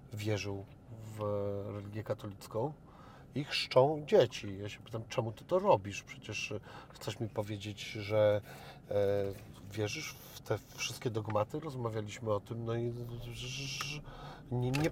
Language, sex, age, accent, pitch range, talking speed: Polish, male, 40-59, native, 115-180 Hz, 120 wpm